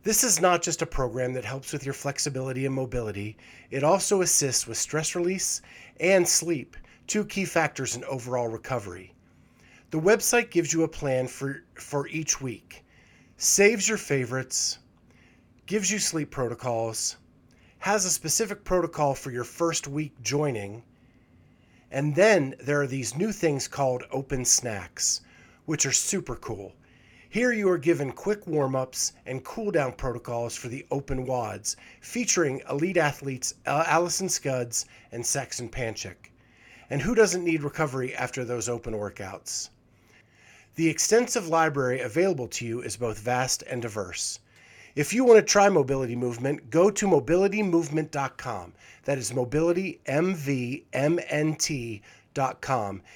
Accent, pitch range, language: American, 125-170 Hz, English